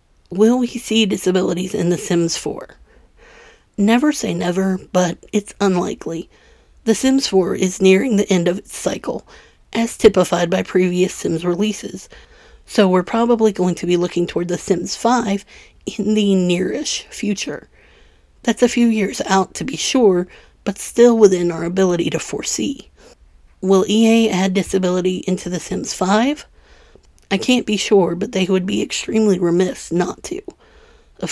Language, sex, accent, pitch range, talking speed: English, female, American, 180-220 Hz, 155 wpm